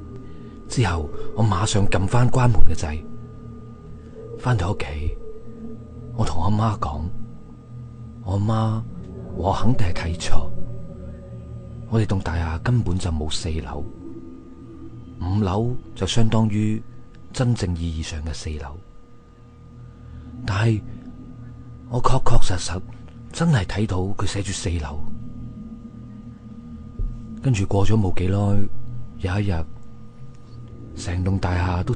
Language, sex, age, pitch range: Chinese, male, 30-49, 85-120 Hz